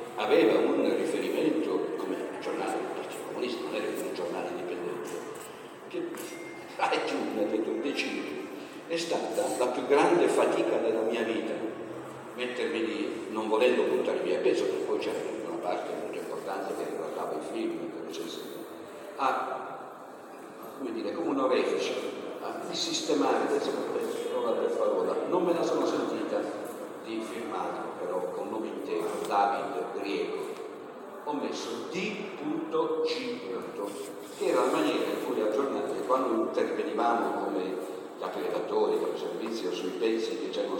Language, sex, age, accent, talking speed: Italian, male, 50-69, native, 145 wpm